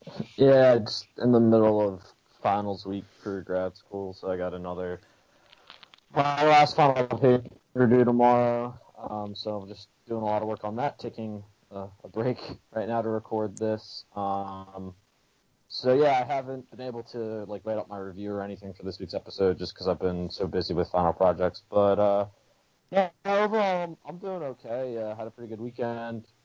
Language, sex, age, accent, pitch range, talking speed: English, male, 20-39, American, 95-120 Hz, 190 wpm